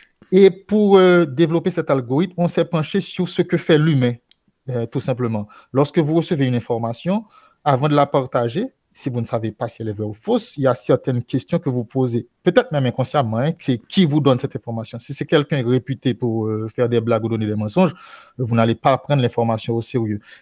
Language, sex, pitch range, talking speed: French, male, 115-150 Hz, 220 wpm